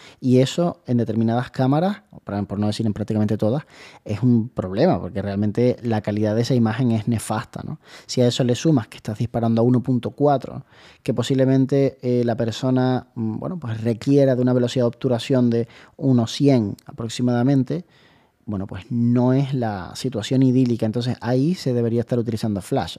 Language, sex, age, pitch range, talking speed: Spanish, male, 20-39, 115-140 Hz, 165 wpm